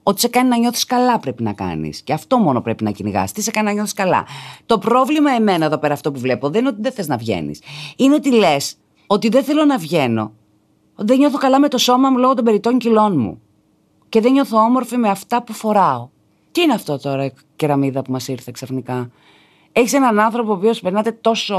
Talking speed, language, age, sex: 220 wpm, Greek, 30-49, female